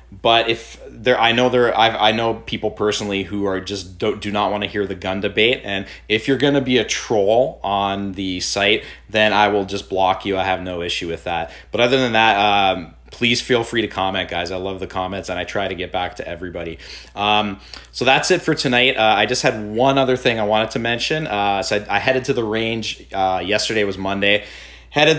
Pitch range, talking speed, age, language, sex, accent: 95-115 Hz, 235 wpm, 30-49, English, male, American